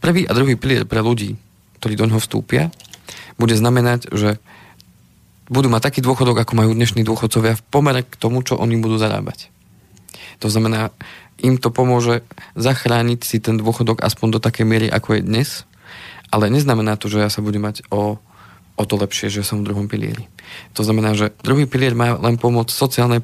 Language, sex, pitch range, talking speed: Slovak, male, 105-120 Hz, 180 wpm